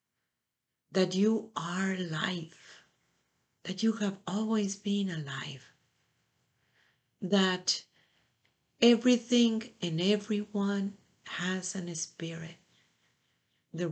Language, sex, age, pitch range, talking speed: English, female, 50-69, 160-195 Hz, 80 wpm